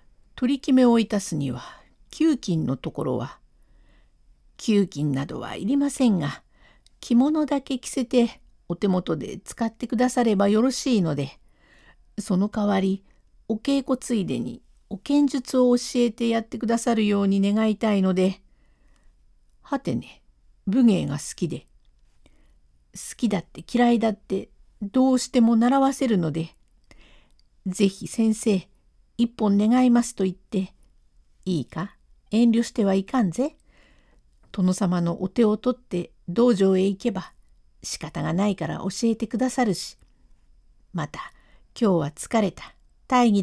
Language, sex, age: Japanese, female, 50-69